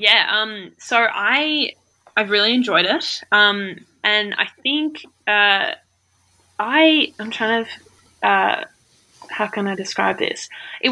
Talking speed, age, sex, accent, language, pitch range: 130 wpm, 10-29, female, Australian, English, 190-230 Hz